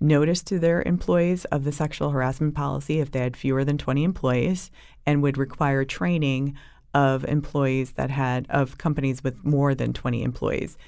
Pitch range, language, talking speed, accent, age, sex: 125-150 Hz, English, 170 wpm, American, 30-49, female